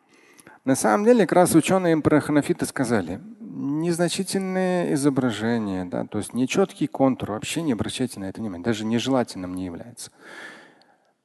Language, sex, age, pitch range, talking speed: Russian, male, 40-59, 120-180 Hz, 140 wpm